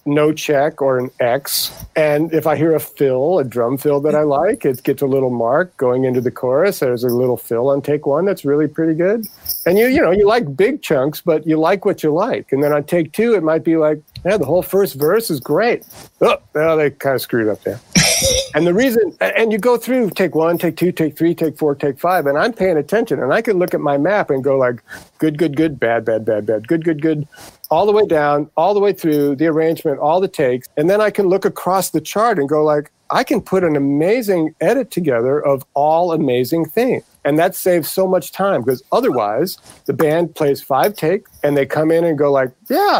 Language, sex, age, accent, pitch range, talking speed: English, male, 50-69, American, 145-200 Hz, 240 wpm